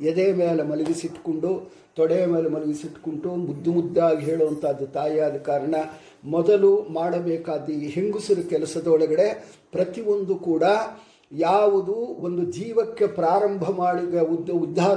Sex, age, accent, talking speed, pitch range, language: male, 50-69, Indian, 140 wpm, 160-205 Hz, English